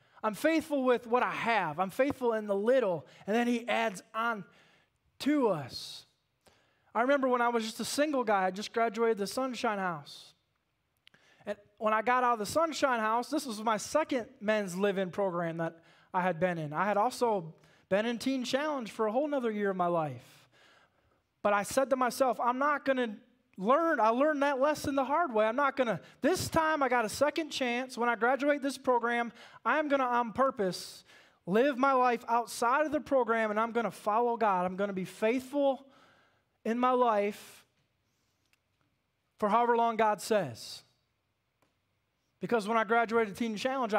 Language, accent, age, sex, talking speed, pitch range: English, American, 20-39, male, 190 wpm, 195-260 Hz